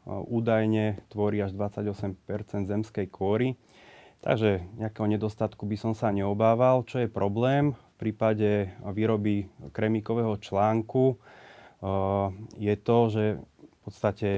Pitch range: 105-115 Hz